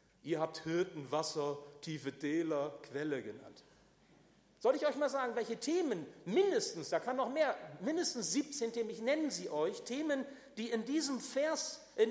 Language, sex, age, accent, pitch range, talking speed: German, male, 50-69, German, 190-275 Hz, 160 wpm